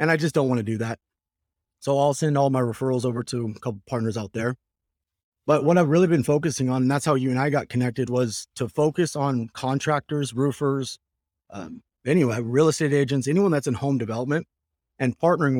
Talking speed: 210 wpm